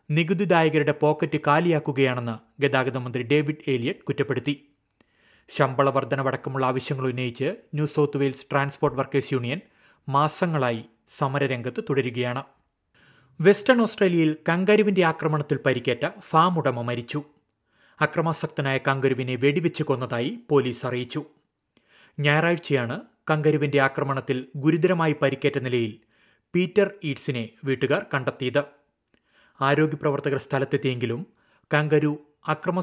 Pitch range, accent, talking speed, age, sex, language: 130-150 Hz, native, 90 wpm, 30-49, male, Malayalam